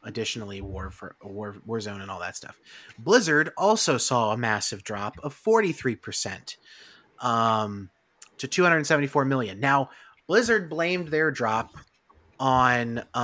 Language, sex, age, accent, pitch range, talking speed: English, male, 30-49, American, 115-145 Hz, 125 wpm